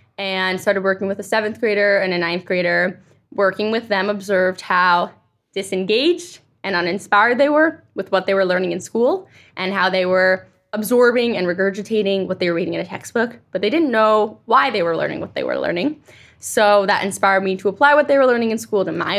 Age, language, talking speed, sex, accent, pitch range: 20-39, English, 215 wpm, female, American, 190-235 Hz